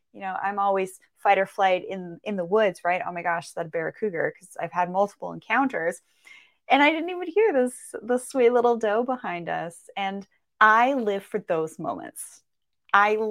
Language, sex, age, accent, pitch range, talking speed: English, female, 30-49, American, 175-215 Hz, 195 wpm